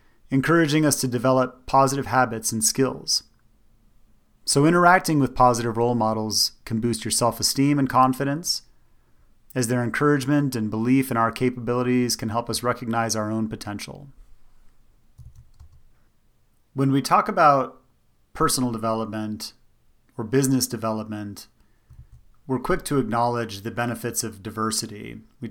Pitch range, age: 110-135 Hz, 30-49